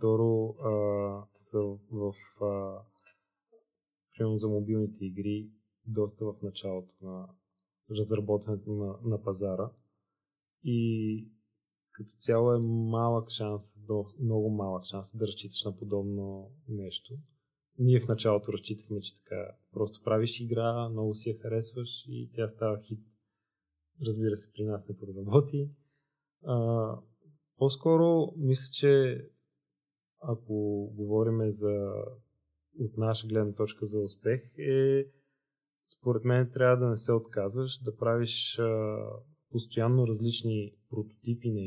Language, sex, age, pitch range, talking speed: Bulgarian, male, 20-39, 105-120 Hz, 115 wpm